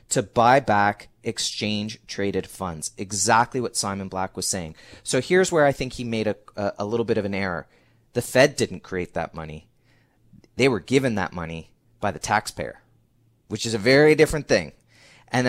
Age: 30-49